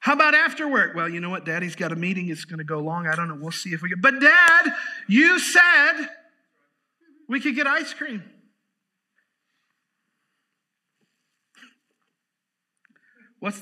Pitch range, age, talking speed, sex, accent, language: 175-250 Hz, 50-69, 150 wpm, male, American, English